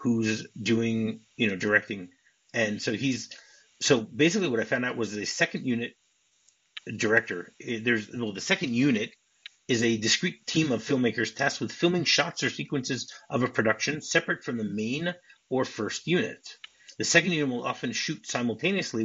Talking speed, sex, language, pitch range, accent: 165 wpm, male, English, 110-145 Hz, American